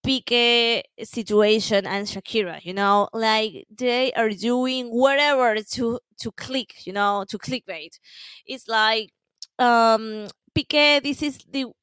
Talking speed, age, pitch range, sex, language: 125 wpm, 20-39, 200-270 Hz, female, English